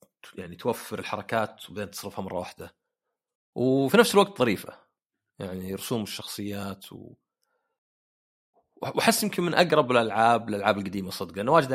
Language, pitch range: Arabic, 100-145 Hz